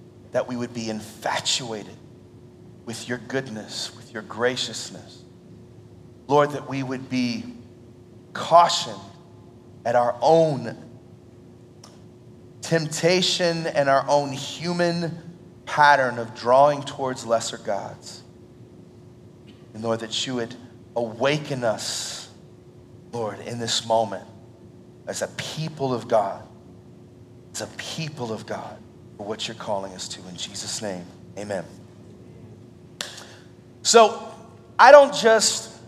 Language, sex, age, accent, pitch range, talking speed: English, male, 30-49, American, 120-175 Hz, 110 wpm